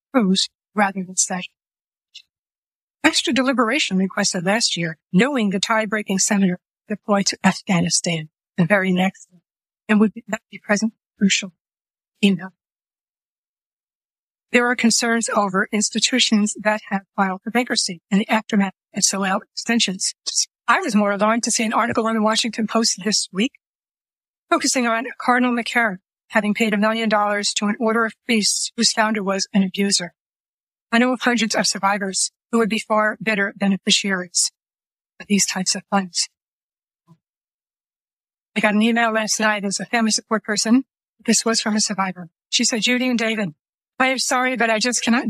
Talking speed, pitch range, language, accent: 165 wpm, 195-230 Hz, English, American